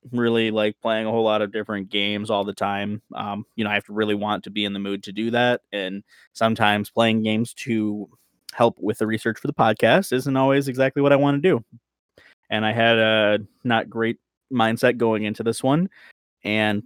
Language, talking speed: English, 215 wpm